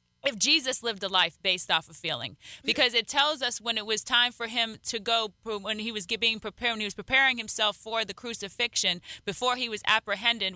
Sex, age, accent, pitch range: female, 30-49, American, 205-245 Hz